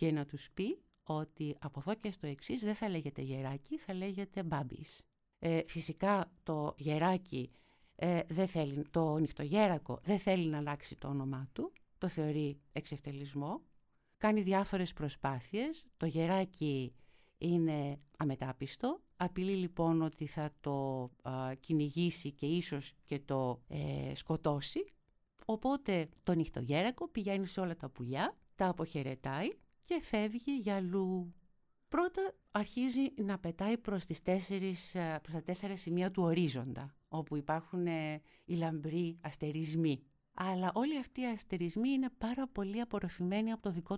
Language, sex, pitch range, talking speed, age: Greek, female, 150-195 Hz, 135 wpm, 60-79